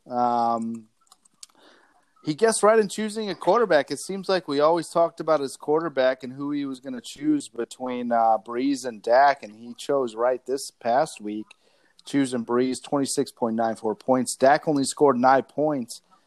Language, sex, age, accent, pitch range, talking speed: English, male, 30-49, American, 120-165 Hz, 165 wpm